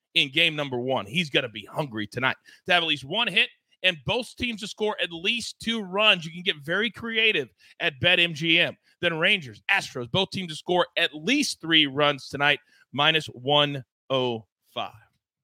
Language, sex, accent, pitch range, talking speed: English, male, American, 140-195 Hz, 180 wpm